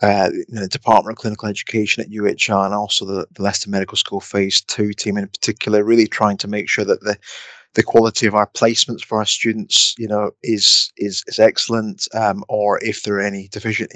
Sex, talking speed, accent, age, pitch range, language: male, 210 wpm, British, 30-49, 100-115 Hz, English